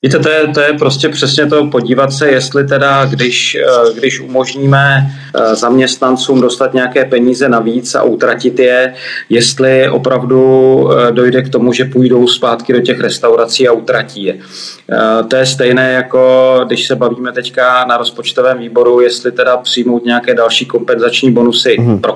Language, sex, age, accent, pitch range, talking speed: Czech, male, 30-49, native, 120-130 Hz, 150 wpm